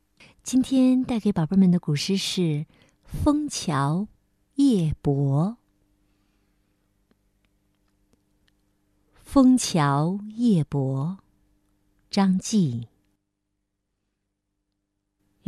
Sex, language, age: female, Chinese, 50-69